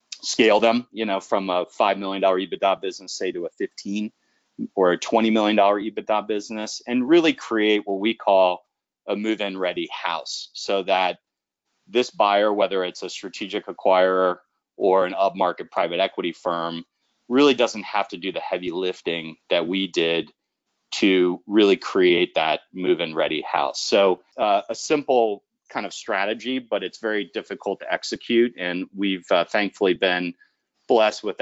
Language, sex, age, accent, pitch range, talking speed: English, male, 30-49, American, 90-110 Hz, 160 wpm